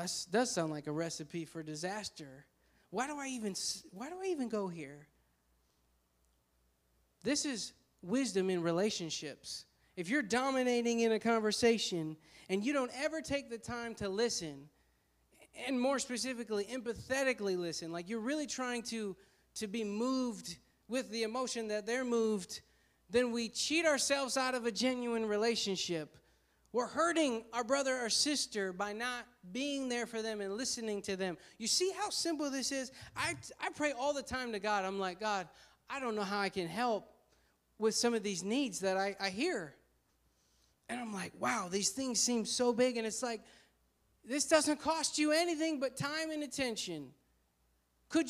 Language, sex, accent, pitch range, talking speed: English, male, American, 195-265 Hz, 170 wpm